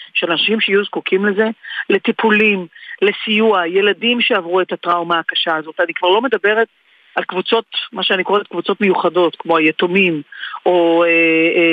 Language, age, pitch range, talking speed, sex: Hebrew, 40-59, 170-220 Hz, 150 wpm, female